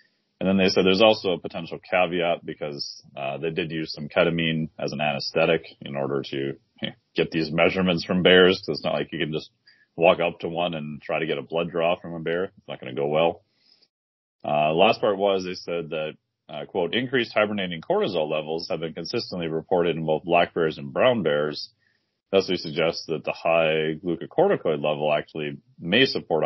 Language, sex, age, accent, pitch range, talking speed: English, male, 30-49, American, 75-90 Hz, 205 wpm